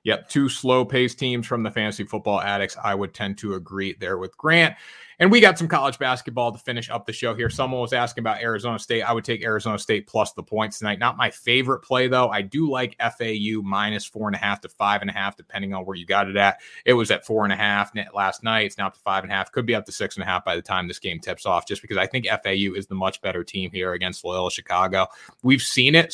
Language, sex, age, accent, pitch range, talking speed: English, male, 30-49, American, 100-120 Hz, 240 wpm